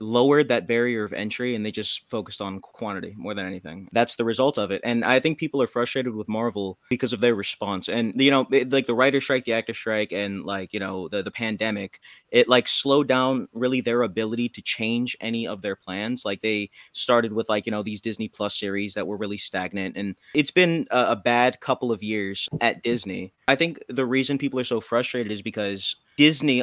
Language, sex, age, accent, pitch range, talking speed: English, male, 20-39, American, 105-130 Hz, 225 wpm